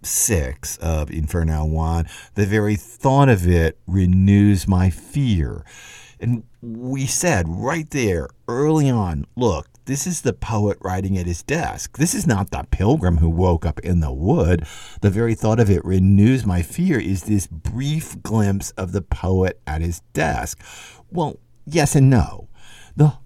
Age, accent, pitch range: 50-69, American, 90-130 Hz